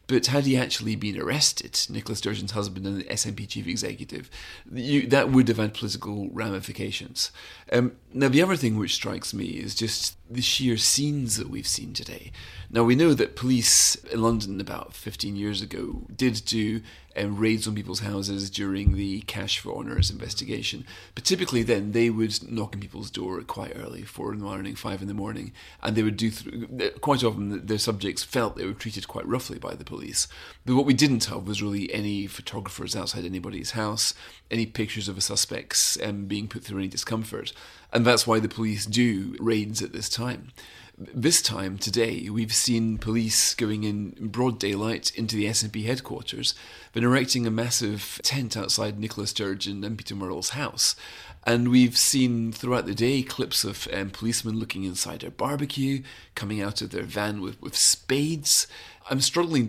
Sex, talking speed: male, 180 wpm